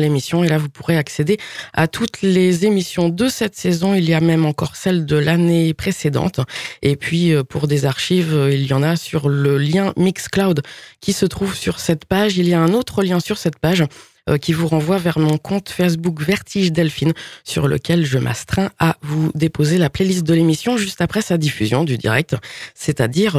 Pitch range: 150-185 Hz